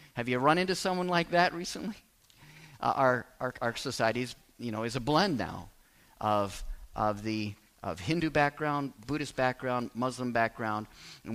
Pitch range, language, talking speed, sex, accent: 110-135 Hz, English, 165 wpm, male, American